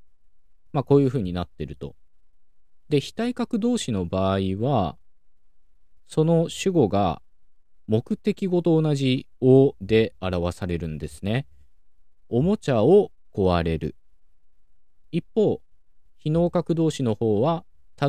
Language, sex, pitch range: Japanese, male, 85-135 Hz